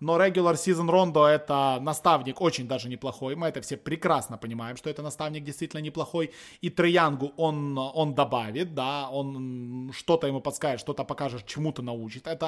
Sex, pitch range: male, 135-165 Hz